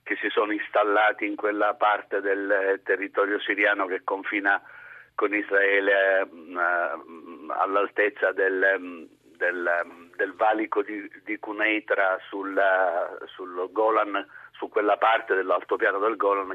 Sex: male